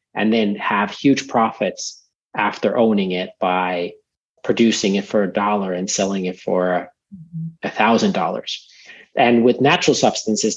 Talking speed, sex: 135 wpm, male